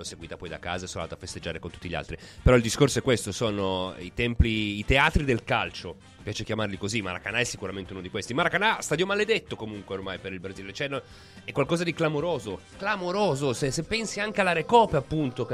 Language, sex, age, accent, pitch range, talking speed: Italian, male, 30-49, native, 95-145 Hz, 220 wpm